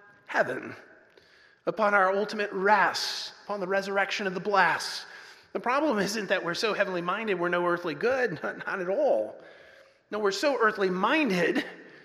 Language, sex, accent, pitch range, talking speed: English, male, American, 195-275 Hz, 150 wpm